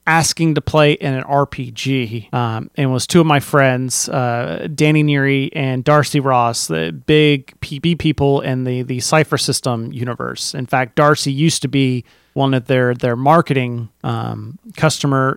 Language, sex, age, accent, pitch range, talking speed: English, male, 30-49, American, 130-155 Hz, 165 wpm